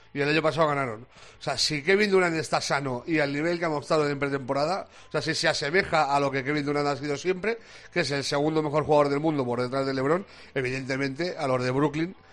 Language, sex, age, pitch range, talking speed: Spanish, male, 40-59, 135-160 Hz, 245 wpm